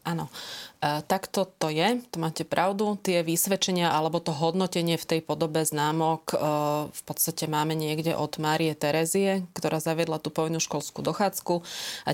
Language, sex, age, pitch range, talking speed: Slovak, female, 30-49, 160-180 Hz, 165 wpm